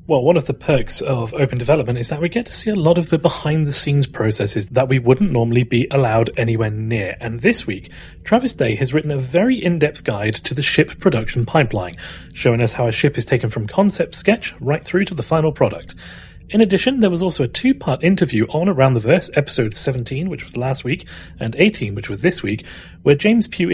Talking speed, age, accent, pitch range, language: 220 wpm, 30-49, British, 115-170 Hz, English